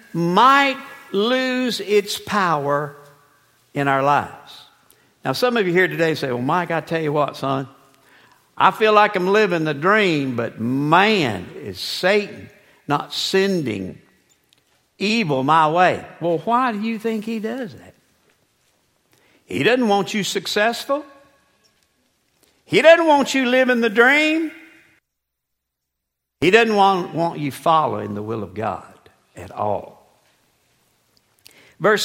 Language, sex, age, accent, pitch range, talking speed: English, male, 60-79, American, 160-240 Hz, 130 wpm